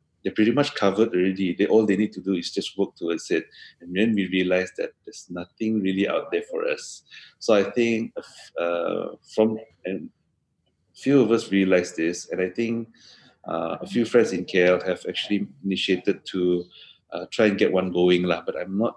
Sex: male